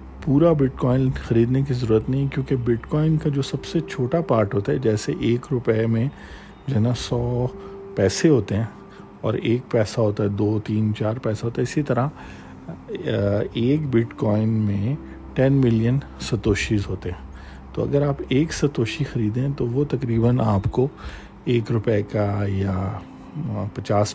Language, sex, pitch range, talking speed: Urdu, male, 105-130 Hz, 160 wpm